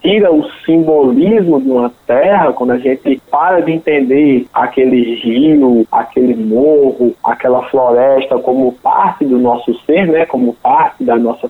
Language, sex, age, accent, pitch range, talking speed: Portuguese, male, 20-39, Brazilian, 145-230 Hz, 140 wpm